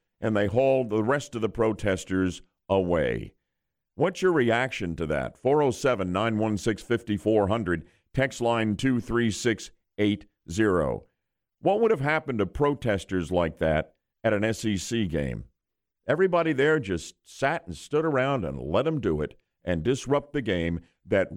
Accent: American